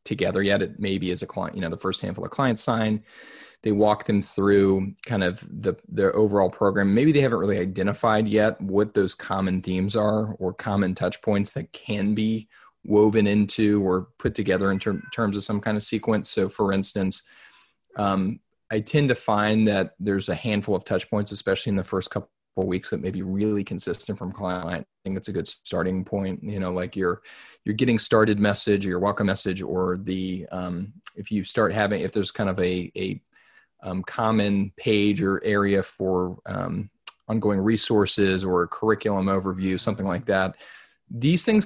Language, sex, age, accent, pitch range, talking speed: English, male, 20-39, American, 90-105 Hz, 195 wpm